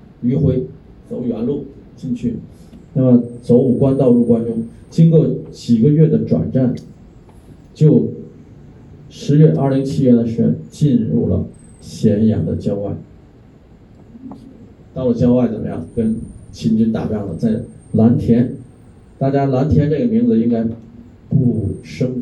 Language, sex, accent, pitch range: Chinese, male, native, 110-135 Hz